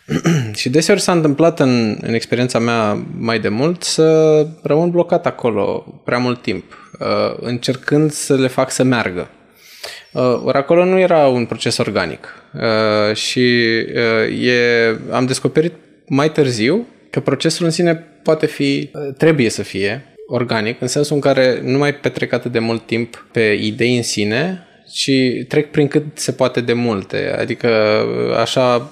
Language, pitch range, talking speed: Romanian, 115-150 Hz, 145 wpm